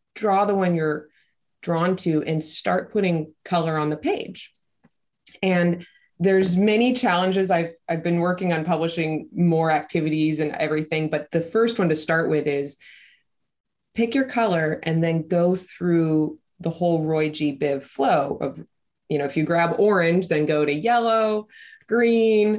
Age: 20-39